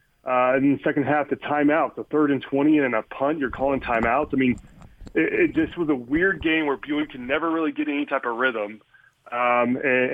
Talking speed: 225 wpm